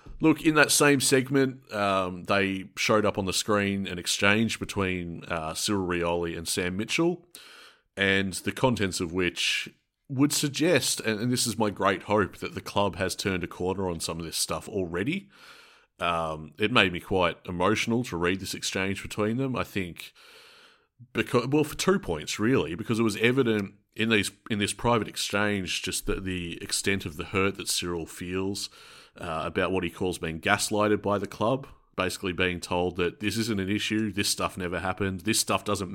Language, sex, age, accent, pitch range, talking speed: English, male, 30-49, Australian, 95-120 Hz, 185 wpm